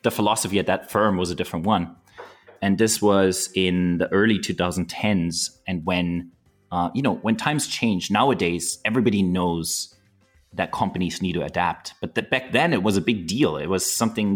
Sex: male